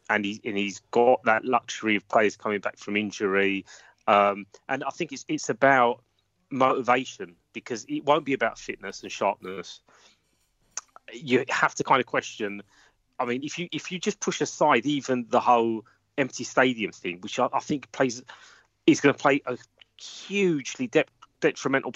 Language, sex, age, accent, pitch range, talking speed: English, male, 30-49, British, 110-145 Hz, 170 wpm